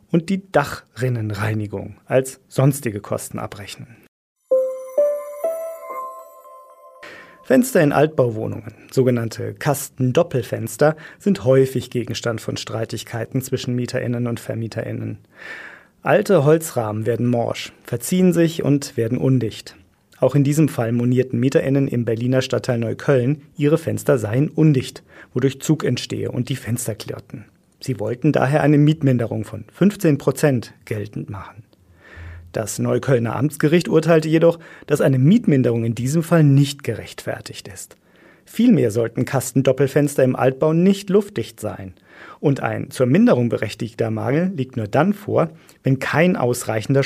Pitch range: 115-150 Hz